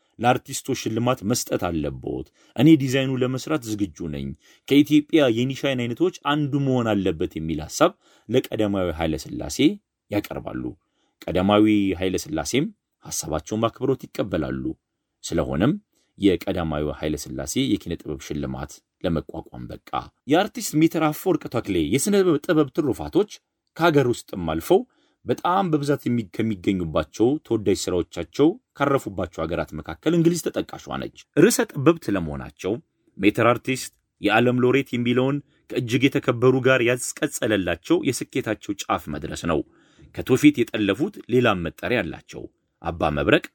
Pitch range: 85-135 Hz